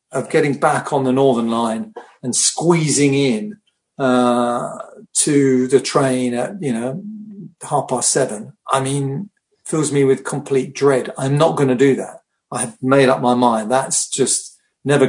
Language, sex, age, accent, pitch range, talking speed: English, male, 50-69, British, 130-170 Hz, 165 wpm